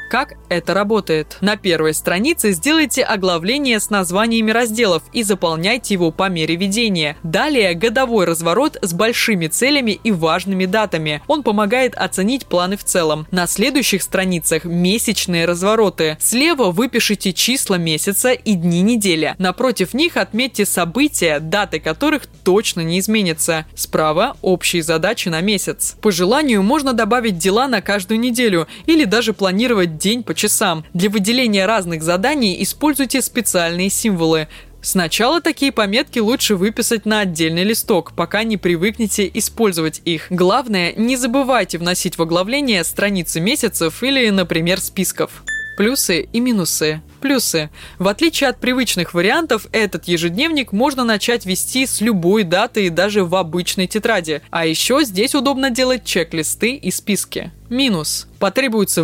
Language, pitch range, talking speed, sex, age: Russian, 175-235 Hz, 135 wpm, female, 20-39